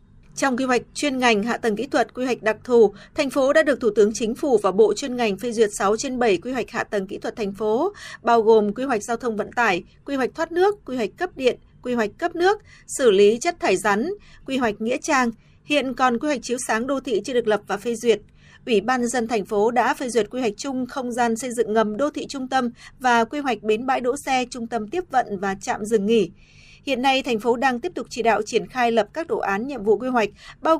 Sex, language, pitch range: female, Vietnamese, 220-265 Hz